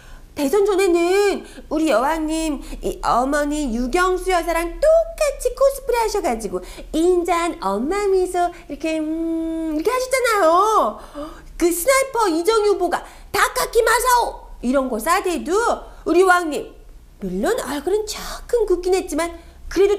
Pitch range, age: 315-415 Hz, 40-59